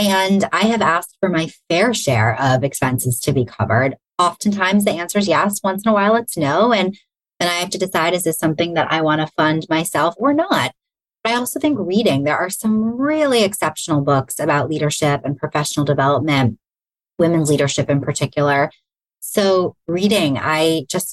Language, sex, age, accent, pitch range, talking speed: English, female, 20-39, American, 140-185 Hz, 180 wpm